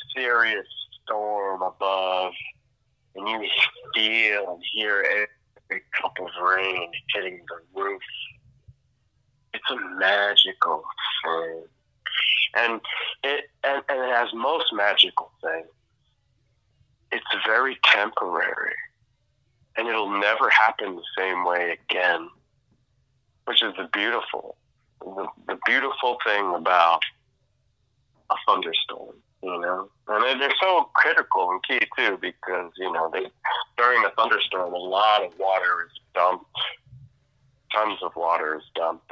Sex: male